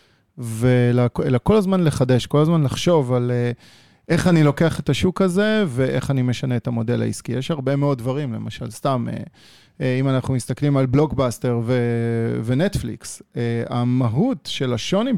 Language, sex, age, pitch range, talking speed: Hebrew, male, 30-49, 120-145 Hz, 140 wpm